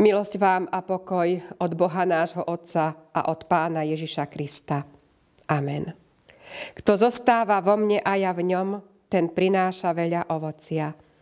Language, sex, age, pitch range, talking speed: Slovak, female, 50-69, 170-210 Hz, 140 wpm